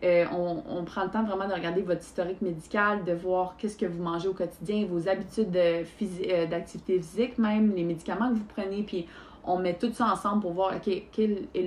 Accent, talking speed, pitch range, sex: Canadian, 225 wpm, 175-210 Hz, female